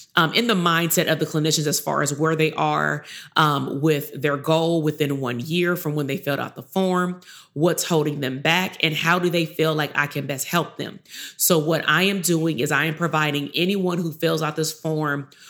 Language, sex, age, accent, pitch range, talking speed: English, female, 30-49, American, 150-175 Hz, 220 wpm